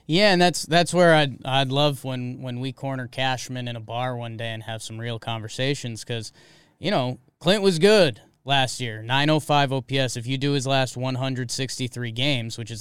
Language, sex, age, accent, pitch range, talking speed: English, male, 20-39, American, 125-155 Hz, 195 wpm